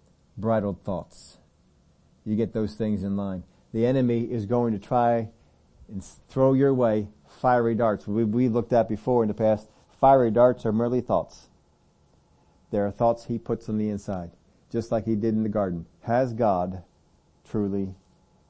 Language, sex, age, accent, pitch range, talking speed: English, male, 50-69, American, 95-120 Hz, 165 wpm